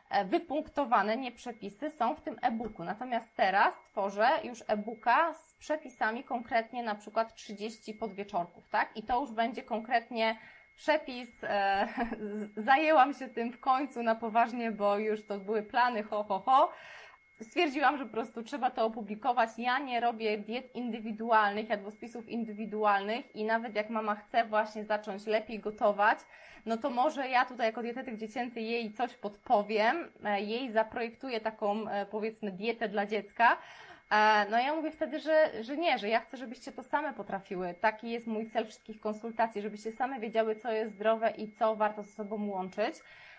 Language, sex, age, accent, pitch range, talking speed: Polish, female, 20-39, native, 210-245 Hz, 160 wpm